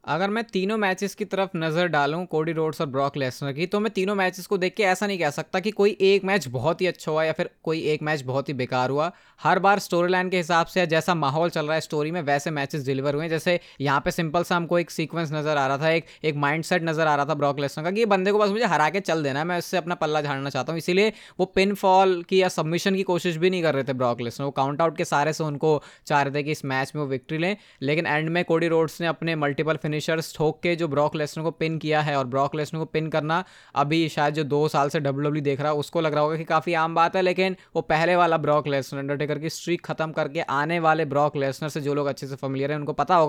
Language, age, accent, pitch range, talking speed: Hindi, 20-39, native, 150-180 Hz, 230 wpm